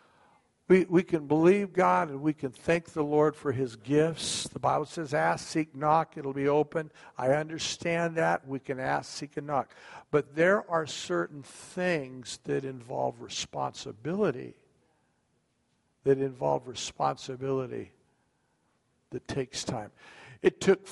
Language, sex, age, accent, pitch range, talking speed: English, male, 60-79, American, 125-170 Hz, 140 wpm